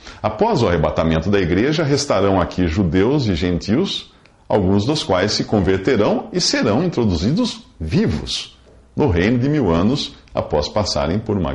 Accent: Brazilian